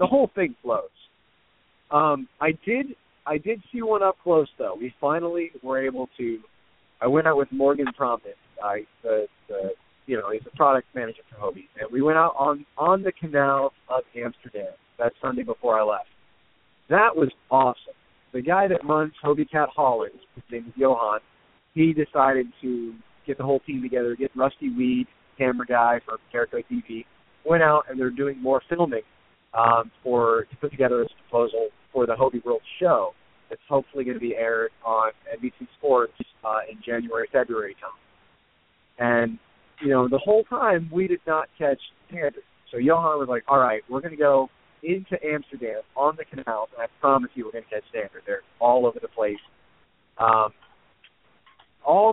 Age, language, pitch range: 40-59, English, 125-180 Hz